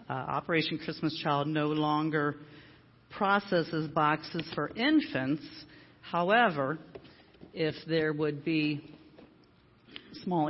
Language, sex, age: English, female, 40-59